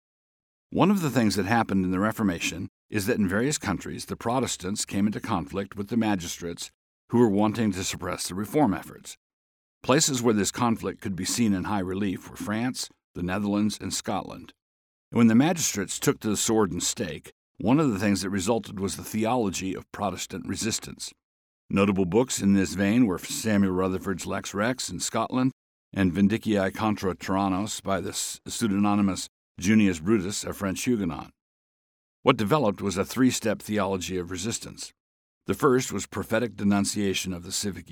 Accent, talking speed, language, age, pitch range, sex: American, 170 wpm, English, 60-79, 95-110 Hz, male